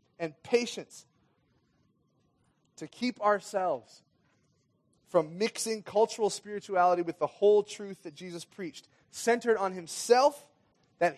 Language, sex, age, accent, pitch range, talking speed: English, male, 30-49, American, 160-225 Hz, 105 wpm